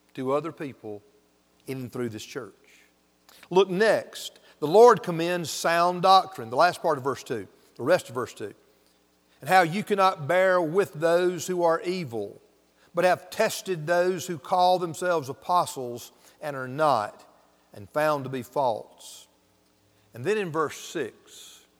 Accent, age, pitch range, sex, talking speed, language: American, 50-69, 125-180 Hz, male, 155 wpm, English